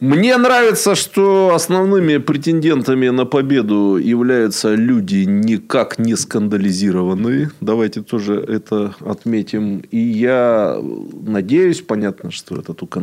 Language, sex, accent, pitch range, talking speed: Russian, male, native, 95-140 Hz, 105 wpm